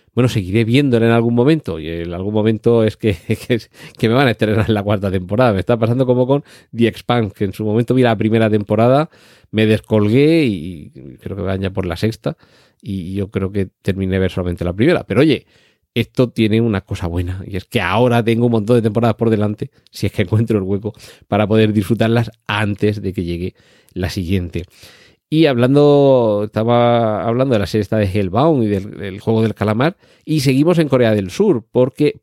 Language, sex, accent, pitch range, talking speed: Spanish, male, Spanish, 100-125 Hz, 205 wpm